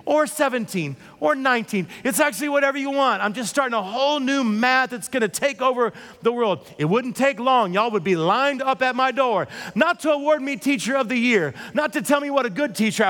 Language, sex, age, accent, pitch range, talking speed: English, male, 40-59, American, 215-280 Hz, 235 wpm